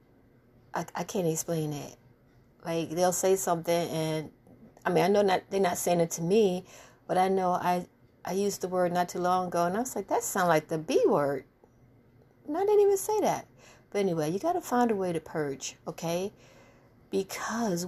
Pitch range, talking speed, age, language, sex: 140-195 Hz, 205 wpm, 60-79, English, female